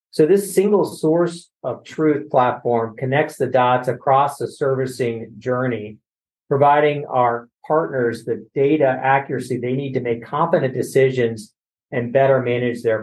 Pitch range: 120-145 Hz